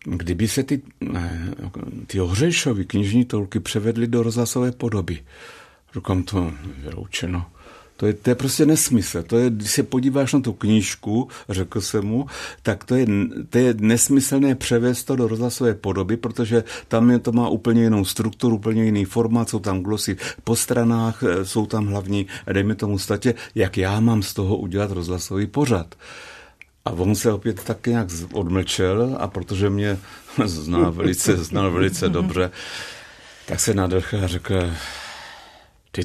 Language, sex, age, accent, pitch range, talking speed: Czech, male, 60-79, native, 95-115 Hz, 155 wpm